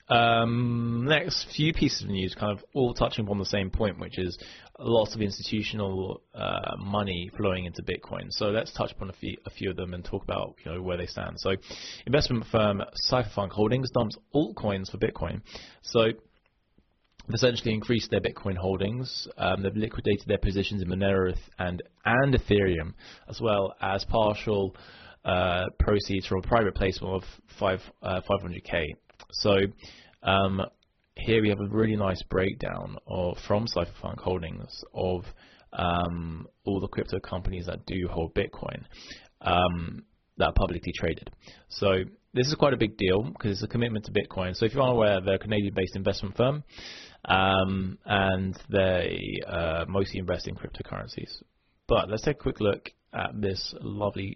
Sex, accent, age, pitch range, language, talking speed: male, British, 20-39, 95-110 Hz, English, 165 wpm